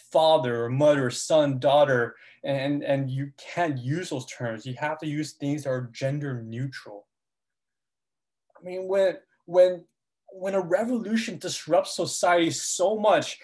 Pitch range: 135-195 Hz